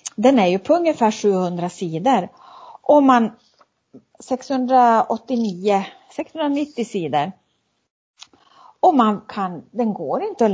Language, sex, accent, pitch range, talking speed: Swedish, female, native, 180-230 Hz, 110 wpm